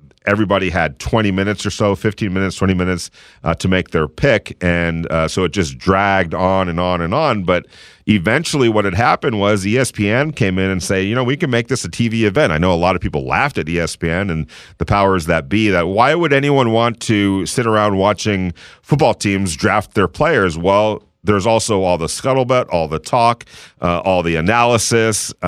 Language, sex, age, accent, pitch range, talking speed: English, male, 40-59, American, 90-110 Hz, 205 wpm